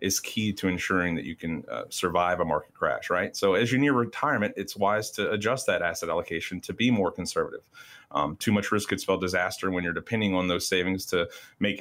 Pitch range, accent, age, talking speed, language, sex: 90-110 Hz, American, 30-49, 225 wpm, English, male